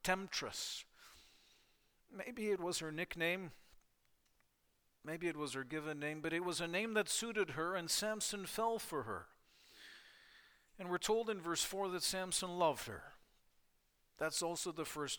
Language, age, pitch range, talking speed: English, 50-69, 145-180 Hz, 155 wpm